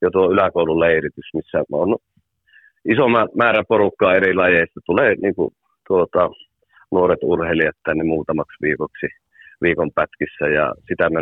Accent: native